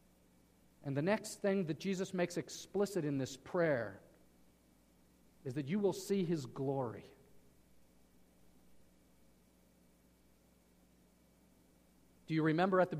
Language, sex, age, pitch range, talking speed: Swedish, male, 50-69, 135-220 Hz, 105 wpm